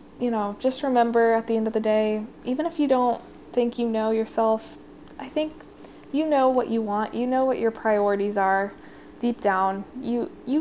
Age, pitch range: 10-29, 210-255 Hz